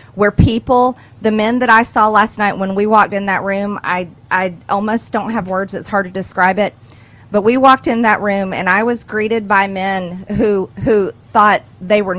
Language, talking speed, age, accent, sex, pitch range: English, 210 wpm, 40-59, American, female, 190-230 Hz